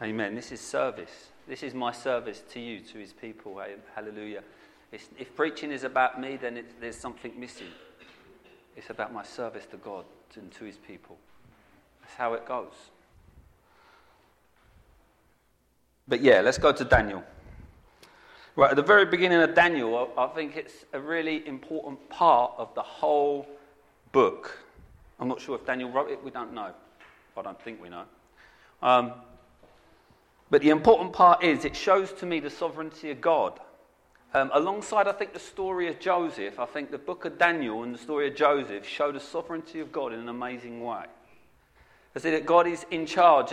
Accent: British